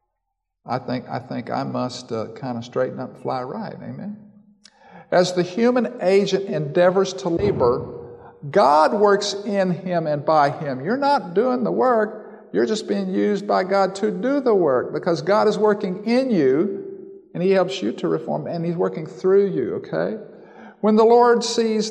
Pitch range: 180-220 Hz